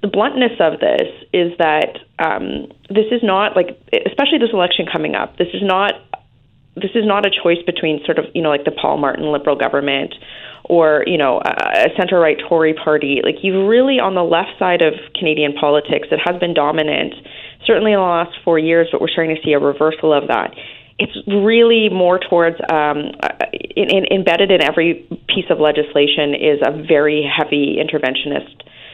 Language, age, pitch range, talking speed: English, 30-49, 150-190 Hz, 185 wpm